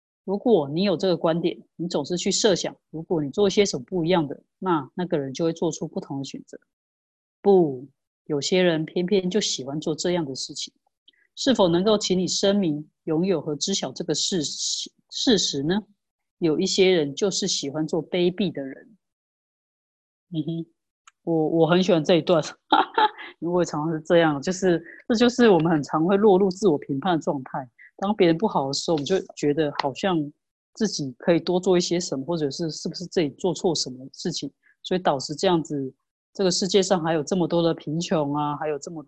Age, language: 30-49, Chinese